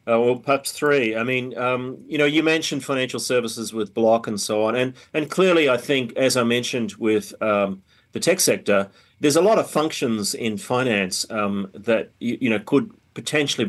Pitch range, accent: 100-130 Hz, Australian